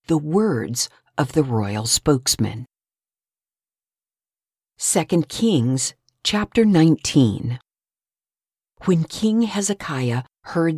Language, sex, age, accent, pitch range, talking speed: English, female, 50-69, American, 130-180 Hz, 80 wpm